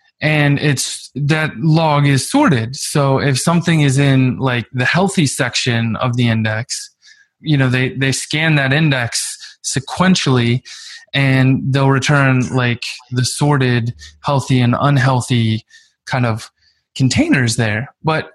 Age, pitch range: 20-39, 125-145 Hz